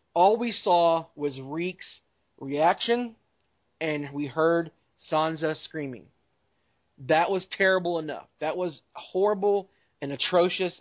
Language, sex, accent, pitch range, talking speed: English, male, American, 140-175 Hz, 110 wpm